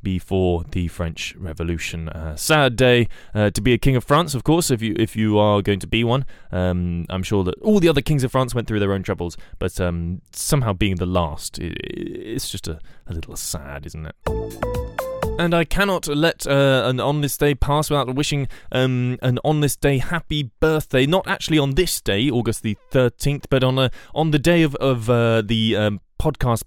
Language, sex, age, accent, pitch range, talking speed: English, male, 20-39, British, 100-140 Hz, 215 wpm